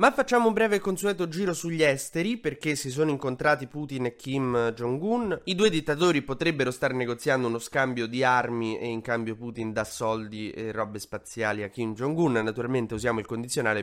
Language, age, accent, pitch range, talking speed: Italian, 20-39, native, 110-145 Hz, 180 wpm